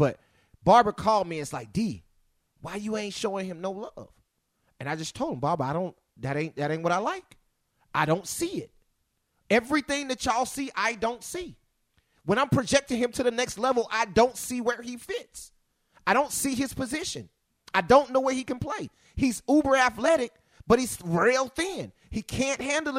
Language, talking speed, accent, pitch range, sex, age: English, 200 wpm, American, 230-295 Hz, male, 30-49